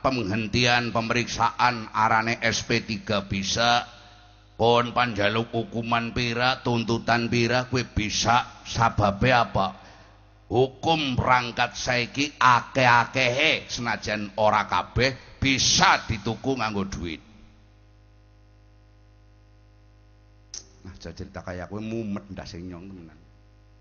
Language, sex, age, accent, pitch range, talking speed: Indonesian, male, 50-69, native, 105-120 Hz, 75 wpm